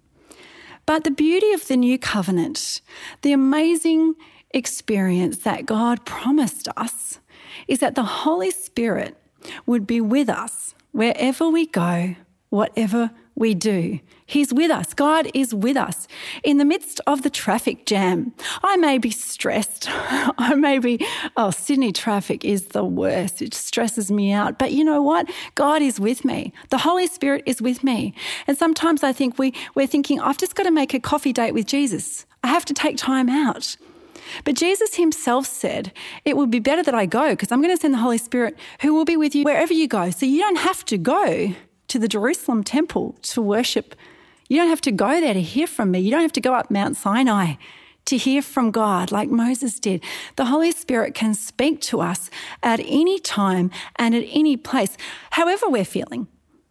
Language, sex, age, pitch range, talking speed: English, female, 40-59, 225-305 Hz, 185 wpm